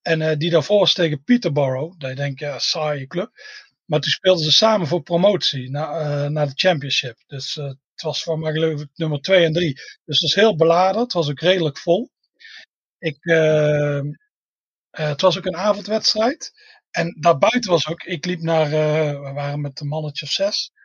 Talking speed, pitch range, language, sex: 200 wpm, 155-205 Hz, Dutch, male